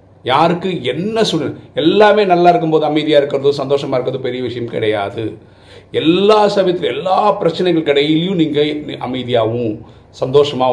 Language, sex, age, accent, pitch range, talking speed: Tamil, male, 40-59, native, 100-155 Hz, 115 wpm